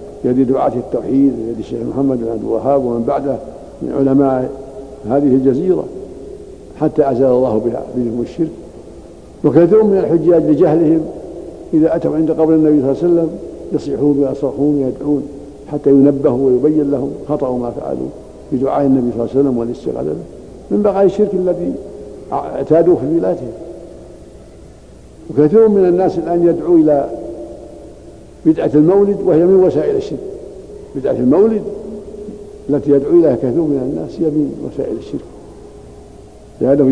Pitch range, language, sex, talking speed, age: 130-170 Hz, Arabic, male, 130 wpm, 60-79